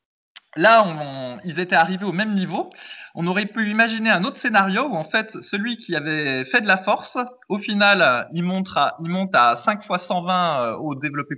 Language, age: French, 20-39